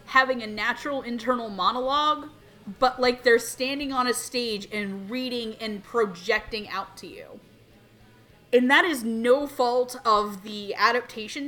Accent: American